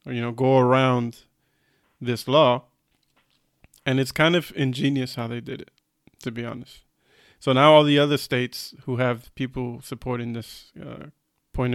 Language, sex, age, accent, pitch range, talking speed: English, male, 20-39, American, 125-150 Hz, 165 wpm